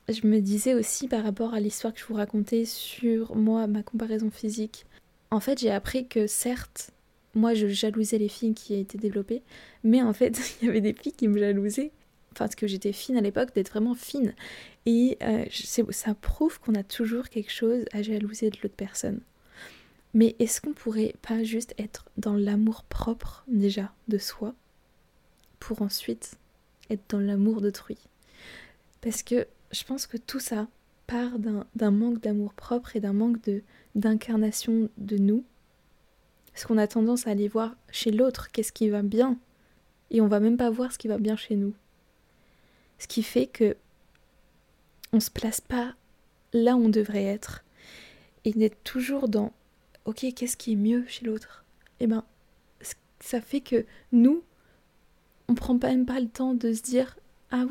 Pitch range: 215-240 Hz